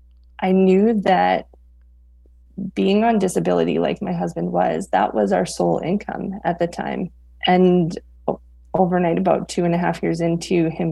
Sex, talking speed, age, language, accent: female, 155 wpm, 20-39, English, American